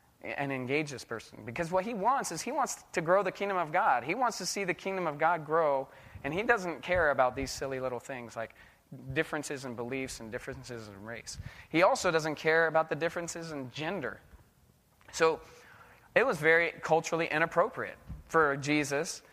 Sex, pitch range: male, 135-185 Hz